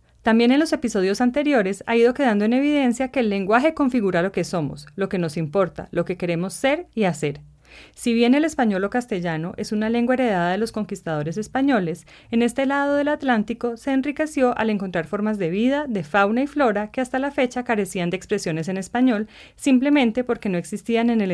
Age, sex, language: 30-49, female, Spanish